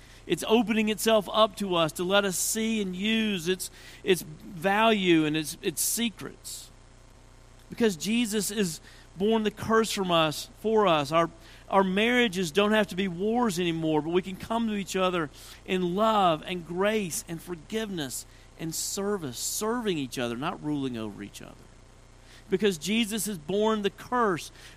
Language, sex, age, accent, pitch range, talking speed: English, male, 40-59, American, 130-200 Hz, 160 wpm